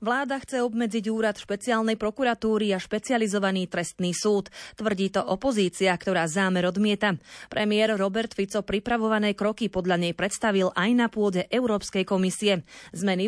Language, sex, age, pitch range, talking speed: Slovak, female, 30-49, 185-225 Hz, 135 wpm